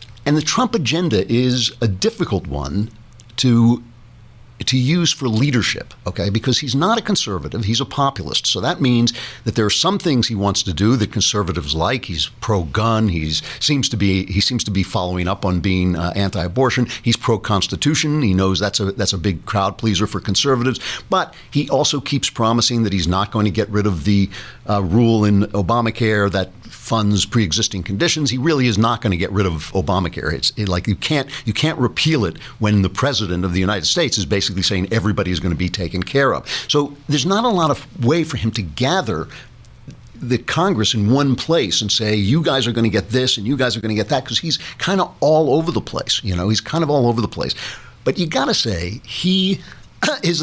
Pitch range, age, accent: 100-135 Hz, 60-79, American